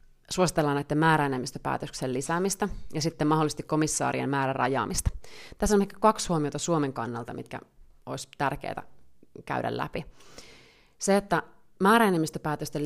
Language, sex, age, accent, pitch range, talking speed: Finnish, female, 30-49, native, 135-155 Hz, 110 wpm